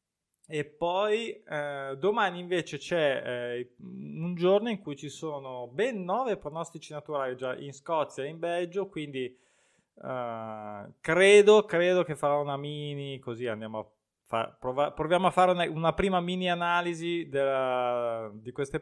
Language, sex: Italian, male